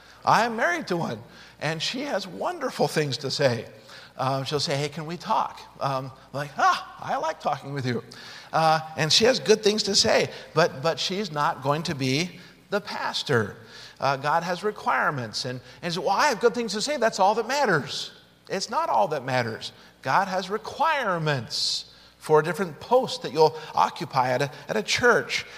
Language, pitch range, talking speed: English, 130-185 Hz, 190 wpm